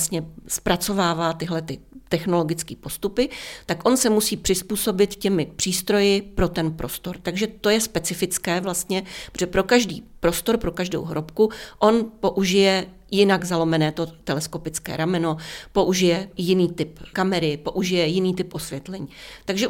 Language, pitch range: Czech, 170-205 Hz